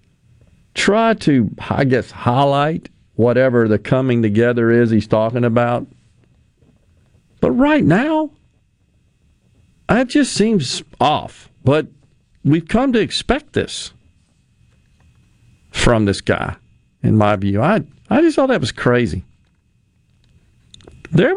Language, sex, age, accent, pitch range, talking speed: English, male, 50-69, American, 110-150 Hz, 110 wpm